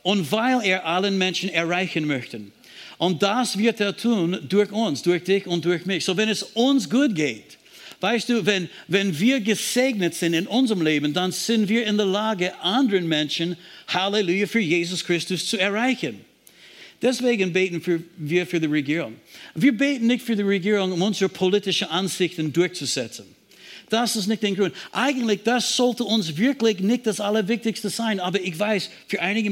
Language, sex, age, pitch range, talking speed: German, male, 60-79, 180-225 Hz, 175 wpm